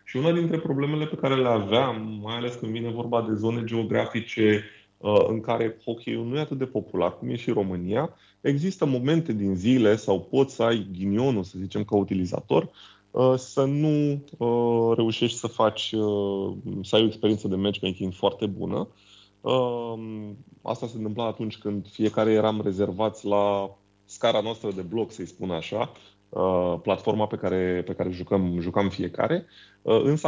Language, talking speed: Romanian, 155 wpm